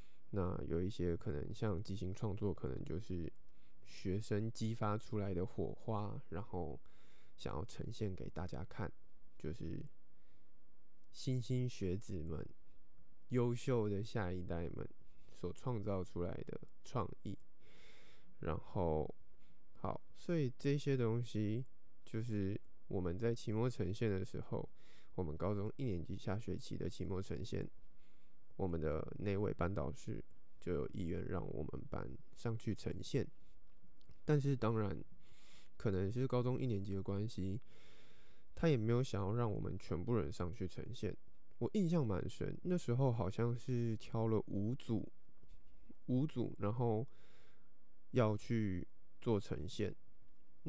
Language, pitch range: Chinese, 90-120 Hz